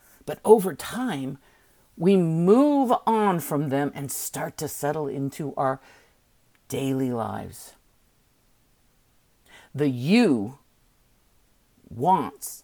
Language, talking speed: English, 90 wpm